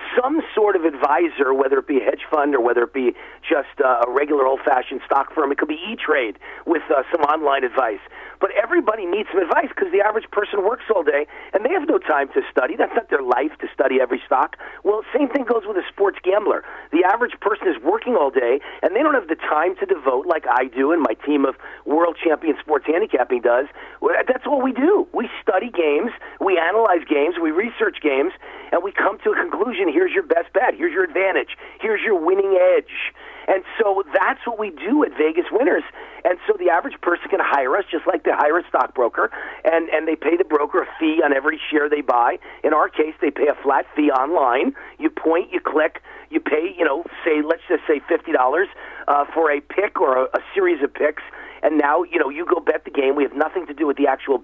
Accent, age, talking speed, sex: American, 40-59, 230 wpm, male